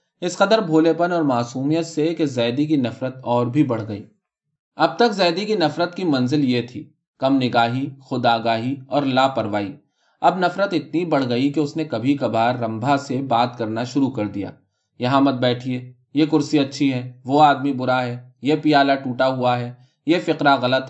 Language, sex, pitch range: Urdu, male, 120-155 Hz